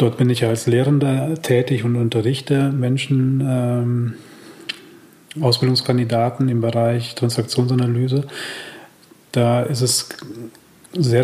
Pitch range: 120-140 Hz